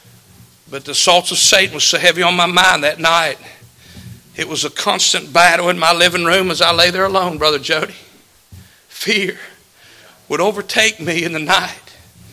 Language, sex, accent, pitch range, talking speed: English, male, American, 175-225 Hz, 175 wpm